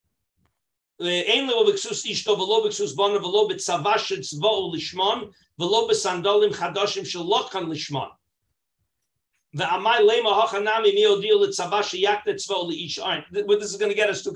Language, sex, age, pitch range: English, male, 40-59, 180-255 Hz